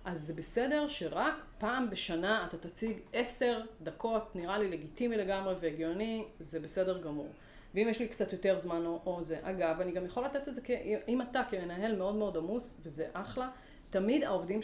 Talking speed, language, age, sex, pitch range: 185 wpm, Hebrew, 30-49, female, 180-235 Hz